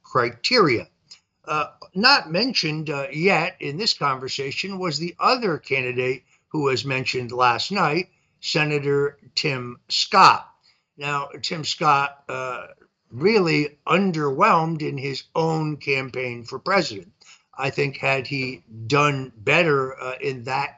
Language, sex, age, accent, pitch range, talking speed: English, male, 60-79, American, 125-155 Hz, 120 wpm